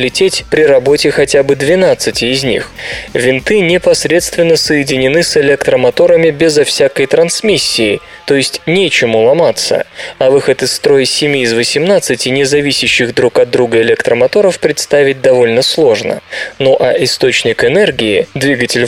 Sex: male